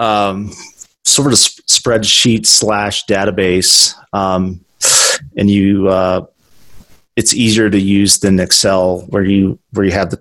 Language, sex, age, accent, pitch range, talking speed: English, male, 30-49, American, 90-105 Hz, 130 wpm